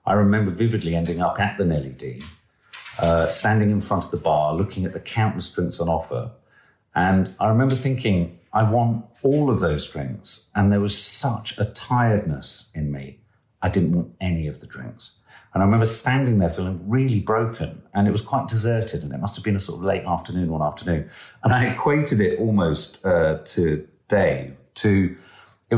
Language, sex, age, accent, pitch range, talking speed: English, male, 50-69, British, 90-115 Hz, 190 wpm